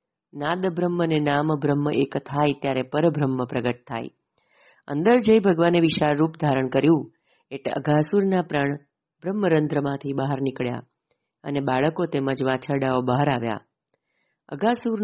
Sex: female